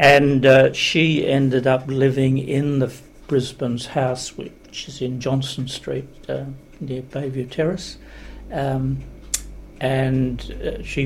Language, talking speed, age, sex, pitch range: English, 130 wpm, 60-79, male, 130-145 Hz